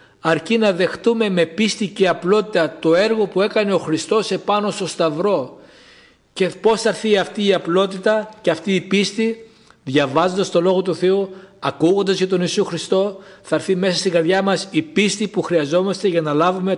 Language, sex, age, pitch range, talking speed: Greek, male, 60-79, 160-205 Hz, 180 wpm